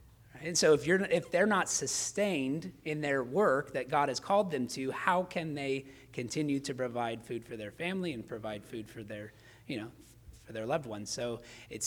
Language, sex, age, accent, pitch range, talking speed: English, male, 30-49, American, 115-135 Hz, 200 wpm